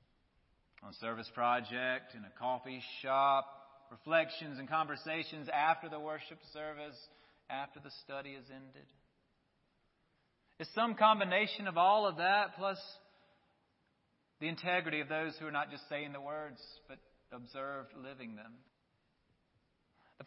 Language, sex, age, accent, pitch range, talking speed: English, male, 30-49, American, 130-185 Hz, 130 wpm